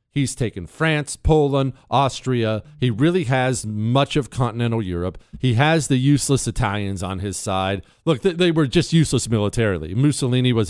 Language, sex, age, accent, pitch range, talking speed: English, male, 40-59, American, 120-160 Hz, 165 wpm